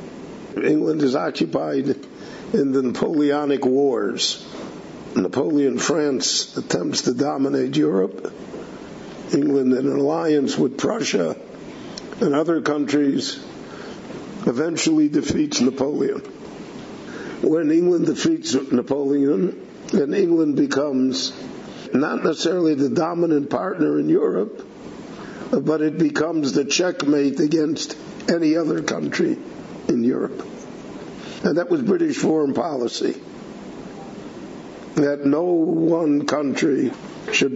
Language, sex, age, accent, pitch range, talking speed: English, male, 60-79, American, 140-165 Hz, 95 wpm